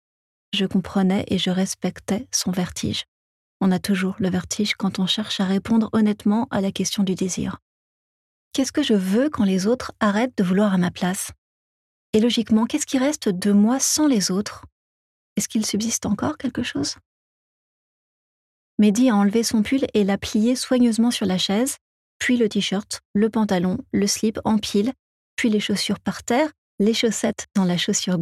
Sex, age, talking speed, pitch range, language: female, 30-49, 175 wpm, 190-230 Hz, French